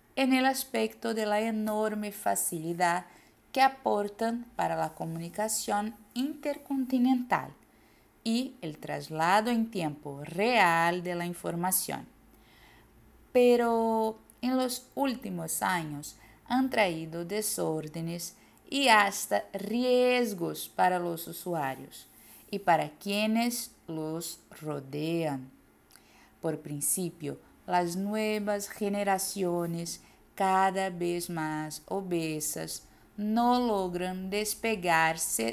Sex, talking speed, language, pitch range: female, 90 wpm, Portuguese, 165-225 Hz